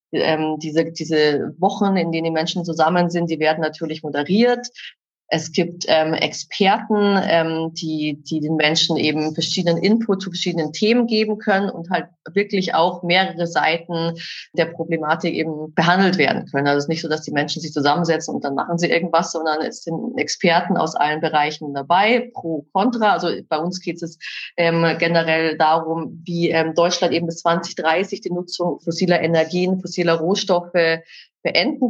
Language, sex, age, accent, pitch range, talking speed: German, female, 30-49, German, 165-195 Hz, 165 wpm